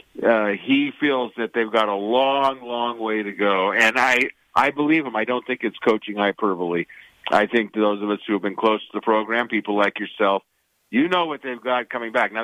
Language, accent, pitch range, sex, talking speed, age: English, American, 110-130 Hz, male, 225 wpm, 50-69